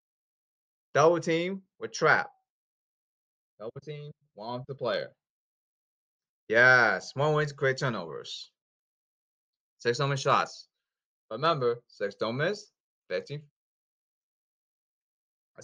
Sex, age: male, 20-39